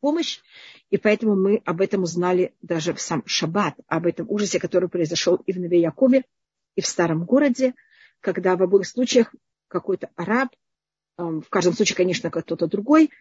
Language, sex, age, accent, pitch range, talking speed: Russian, female, 40-59, native, 195-255 Hz, 160 wpm